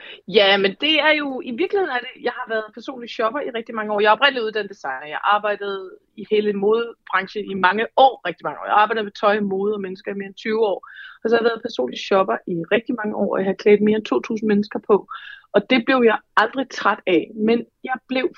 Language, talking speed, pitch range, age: Danish, 240 wpm, 190-230 Hz, 30-49